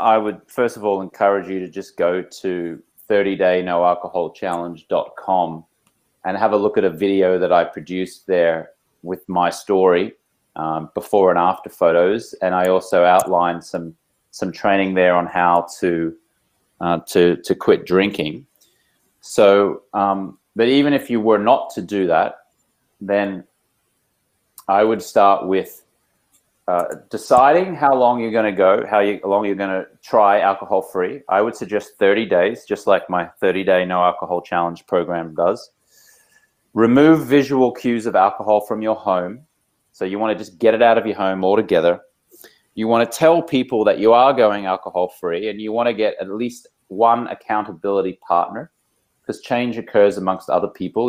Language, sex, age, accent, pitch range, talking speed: English, male, 30-49, Australian, 90-110 Hz, 170 wpm